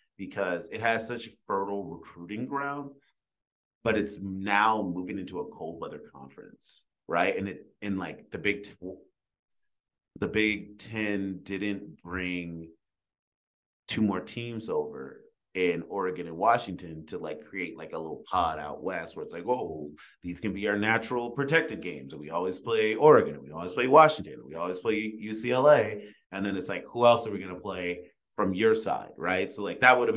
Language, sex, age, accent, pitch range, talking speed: English, male, 30-49, American, 90-110 Hz, 185 wpm